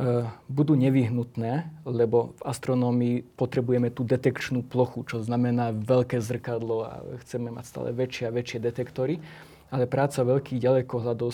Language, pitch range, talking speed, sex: Slovak, 120-130 Hz, 130 wpm, male